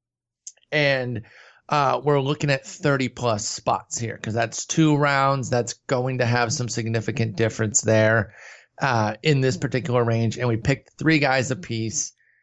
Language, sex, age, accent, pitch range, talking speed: English, male, 30-49, American, 115-150 Hz, 155 wpm